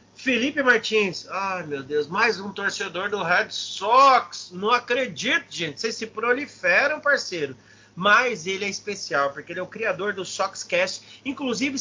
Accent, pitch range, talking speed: Brazilian, 180-240 Hz, 150 wpm